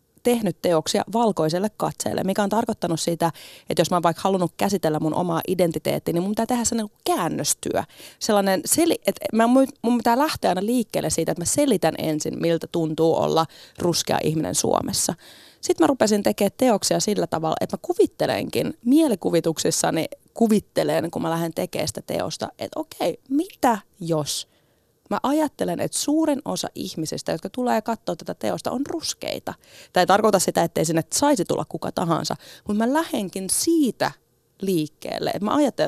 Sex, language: female, Finnish